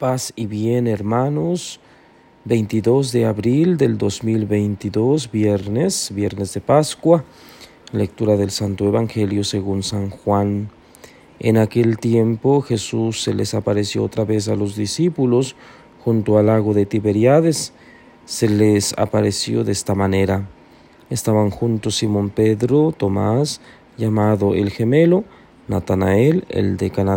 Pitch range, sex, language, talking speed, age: 100-130 Hz, male, Spanish, 120 wpm, 40-59